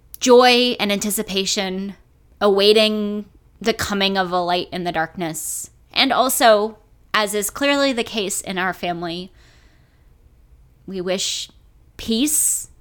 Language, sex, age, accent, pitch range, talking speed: English, female, 20-39, American, 180-215 Hz, 115 wpm